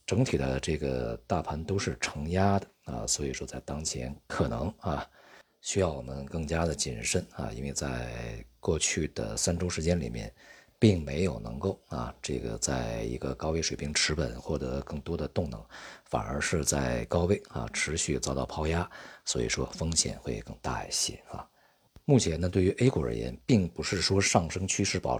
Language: Chinese